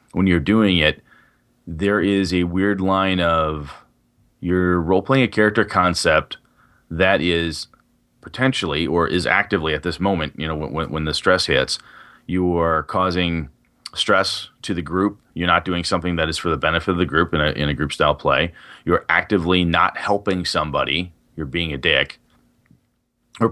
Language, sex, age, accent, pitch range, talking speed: English, male, 30-49, American, 85-100 Hz, 175 wpm